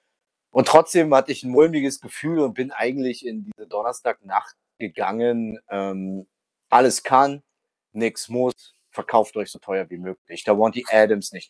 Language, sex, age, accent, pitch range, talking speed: German, male, 30-49, German, 110-140 Hz, 155 wpm